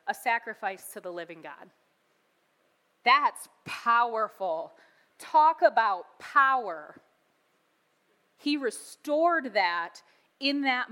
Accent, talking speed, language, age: American, 90 wpm, English, 20-39